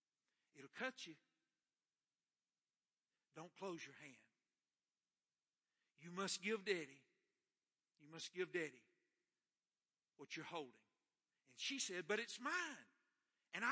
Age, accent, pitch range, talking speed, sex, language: 60-79, American, 145-235 Hz, 110 wpm, male, English